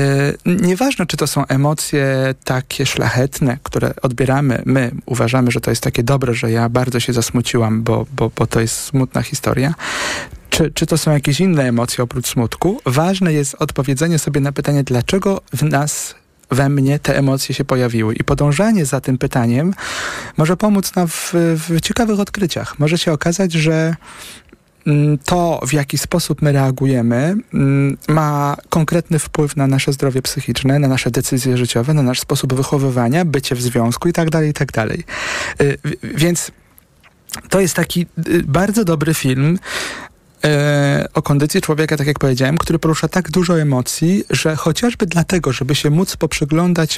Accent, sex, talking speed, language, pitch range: native, male, 155 wpm, Polish, 130-165 Hz